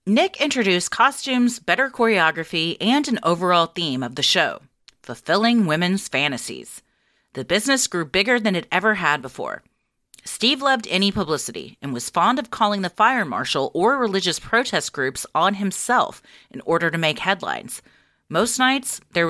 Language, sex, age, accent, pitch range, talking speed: English, female, 30-49, American, 155-225 Hz, 155 wpm